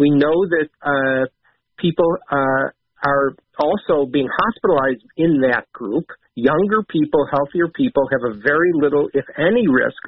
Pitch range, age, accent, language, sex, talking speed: 140-190 Hz, 50-69, American, English, male, 145 wpm